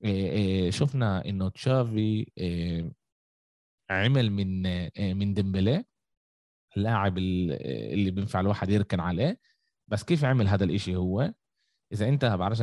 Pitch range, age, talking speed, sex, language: 95-130 Hz, 20-39, 125 wpm, male, Arabic